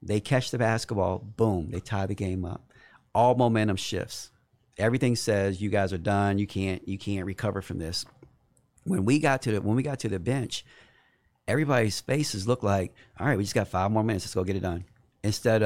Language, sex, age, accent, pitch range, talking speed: English, male, 40-59, American, 100-120 Hz, 210 wpm